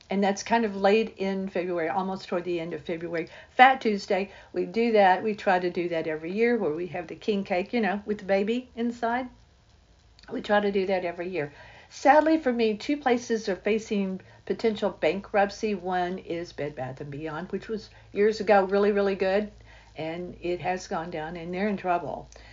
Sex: female